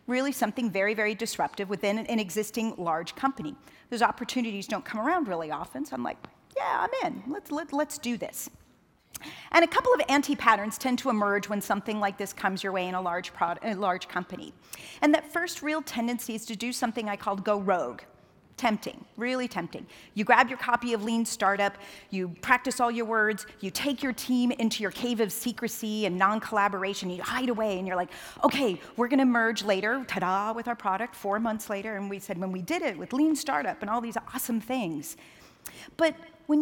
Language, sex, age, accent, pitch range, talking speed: English, female, 40-59, American, 195-255 Hz, 205 wpm